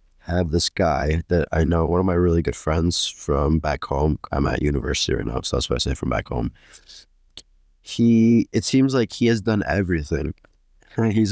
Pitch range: 85-105 Hz